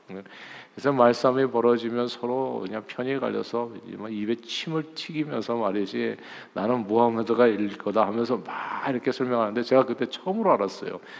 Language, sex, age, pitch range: Korean, male, 50-69, 105-135 Hz